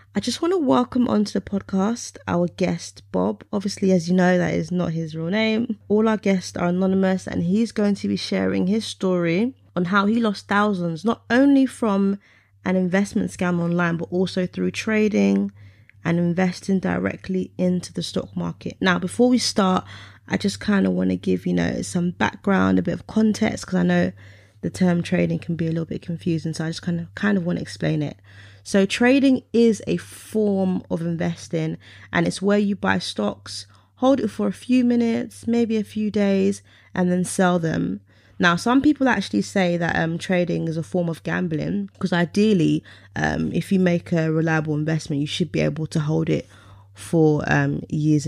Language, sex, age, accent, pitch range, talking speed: English, female, 20-39, British, 145-200 Hz, 195 wpm